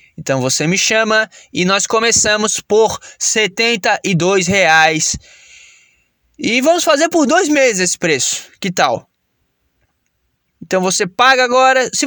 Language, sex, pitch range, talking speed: Portuguese, male, 160-230 Hz, 125 wpm